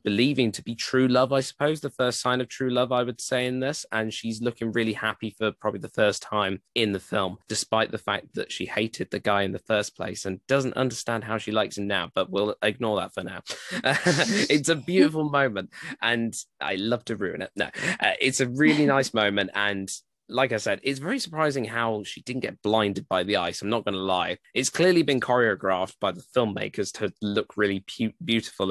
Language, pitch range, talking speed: English, 100-125 Hz, 220 wpm